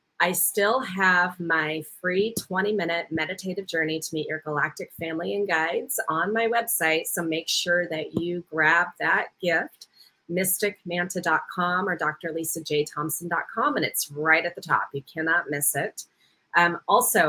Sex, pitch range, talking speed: female, 160-190 Hz, 145 wpm